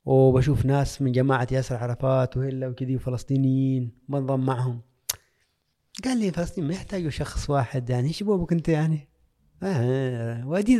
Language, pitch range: Arabic, 115-160 Hz